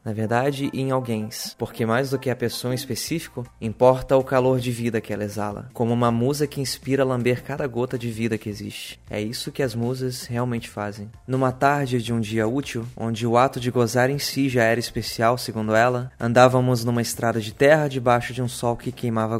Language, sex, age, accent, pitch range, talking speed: Portuguese, male, 20-39, Brazilian, 115-130 Hz, 215 wpm